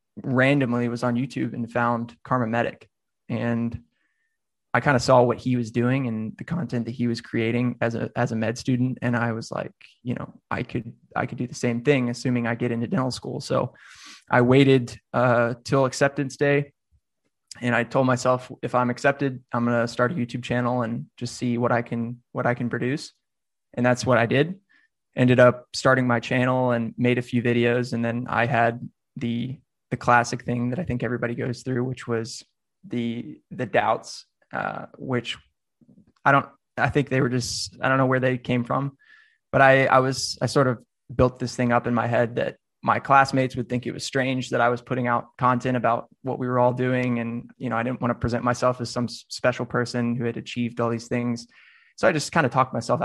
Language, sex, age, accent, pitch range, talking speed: English, male, 20-39, American, 120-130 Hz, 215 wpm